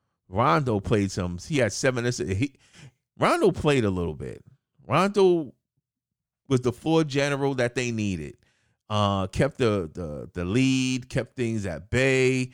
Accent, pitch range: American, 95-135 Hz